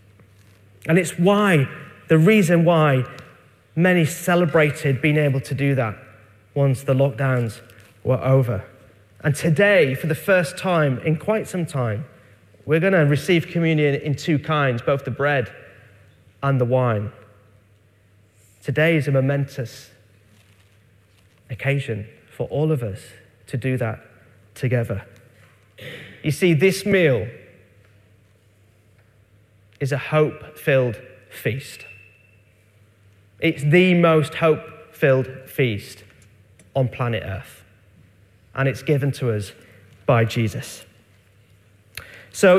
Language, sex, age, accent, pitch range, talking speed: English, male, 30-49, British, 105-165 Hz, 110 wpm